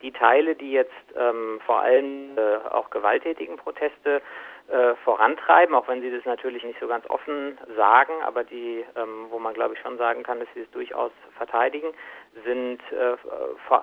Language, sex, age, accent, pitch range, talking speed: German, male, 50-69, German, 120-170 Hz, 180 wpm